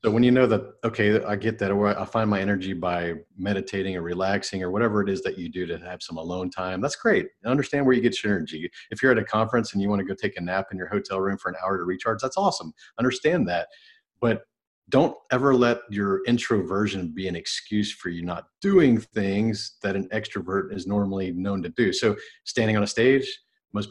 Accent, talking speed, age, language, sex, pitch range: American, 230 wpm, 40-59, English, male, 95-125 Hz